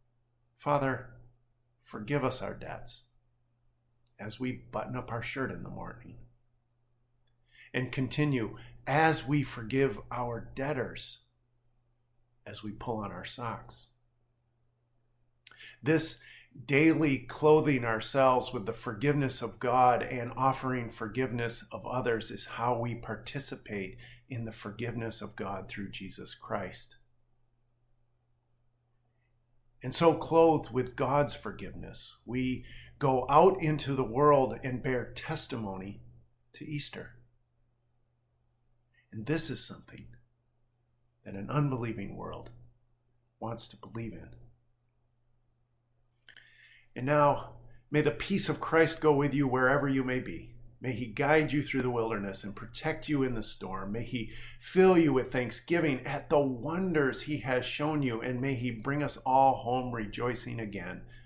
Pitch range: 120-130 Hz